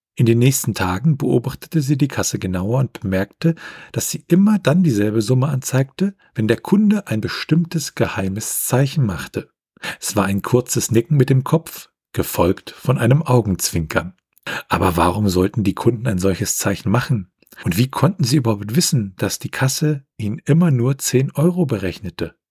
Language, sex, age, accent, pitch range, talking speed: German, male, 40-59, German, 100-150 Hz, 165 wpm